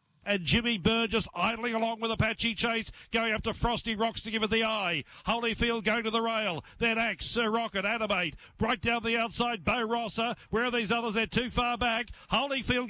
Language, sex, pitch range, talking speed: English, male, 205-255 Hz, 205 wpm